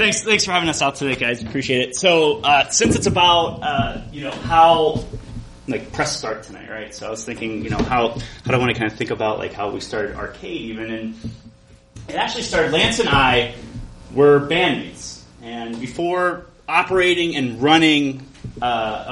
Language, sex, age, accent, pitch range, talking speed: English, male, 30-49, American, 115-165 Hz, 190 wpm